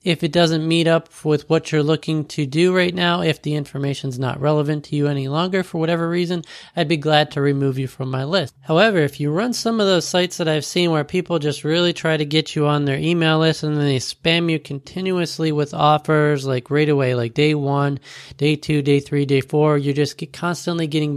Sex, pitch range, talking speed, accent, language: male, 145-165 Hz, 230 wpm, American, English